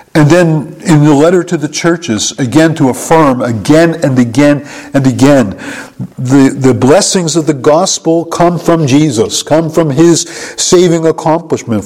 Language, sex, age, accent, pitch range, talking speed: English, male, 50-69, American, 125-155 Hz, 150 wpm